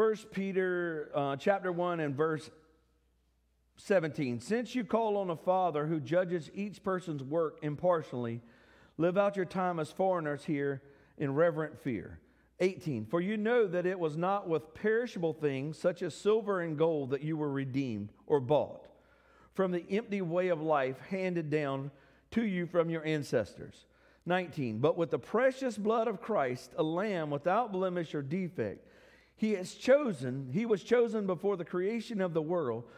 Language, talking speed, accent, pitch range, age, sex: English, 165 wpm, American, 155-205 Hz, 50-69, male